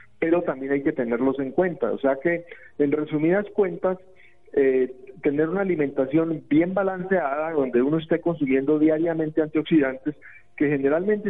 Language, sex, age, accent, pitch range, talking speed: Spanish, male, 40-59, Colombian, 145-190 Hz, 145 wpm